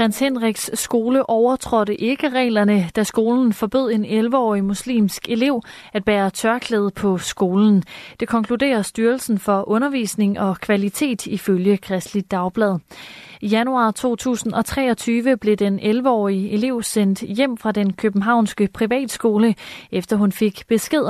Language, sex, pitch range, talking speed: Danish, female, 195-235 Hz, 125 wpm